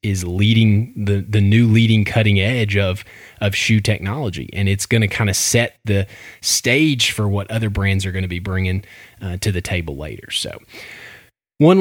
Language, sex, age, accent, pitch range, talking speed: English, male, 20-39, American, 105-120 Hz, 190 wpm